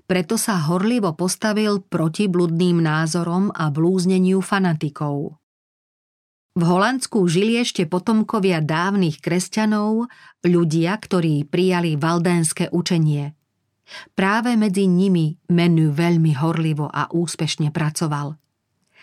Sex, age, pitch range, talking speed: female, 40-59, 160-195 Hz, 100 wpm